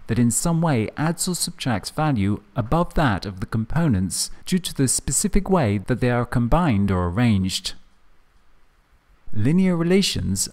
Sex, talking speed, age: male, 150 wpm, 40-59